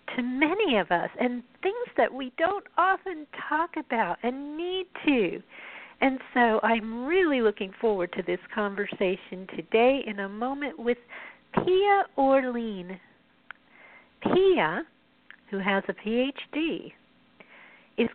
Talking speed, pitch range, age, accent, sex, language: 120 wpm, 205-280 Hz, 50-69, American, female, English